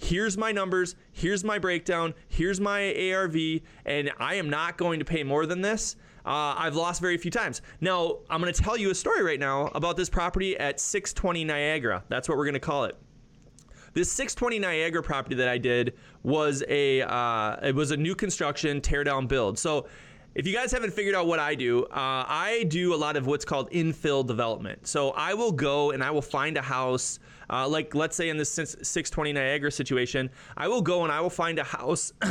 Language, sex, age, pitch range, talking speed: English, male, 20-39, 145-185 Hz, 210 wpm